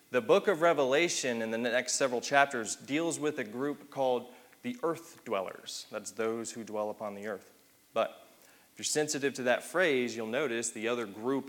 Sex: male